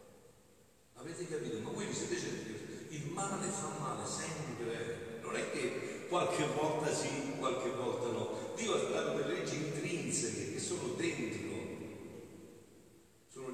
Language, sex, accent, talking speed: Italian, male, native, 145 wpm